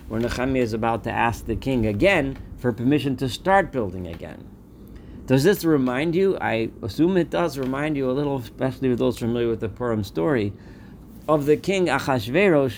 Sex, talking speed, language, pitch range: male, 185 wpm, English, 105-135 Hz